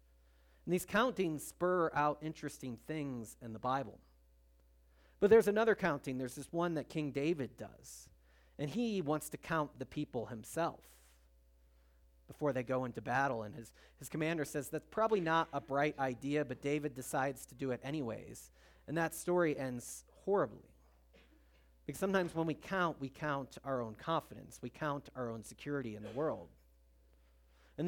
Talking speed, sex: 165 wpm, male